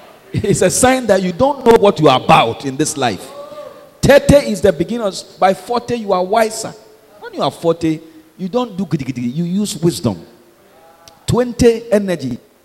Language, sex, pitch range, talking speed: English, male, 165-240 Hz, 170 wpm